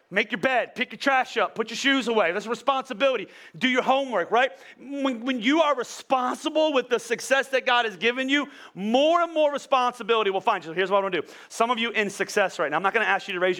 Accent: American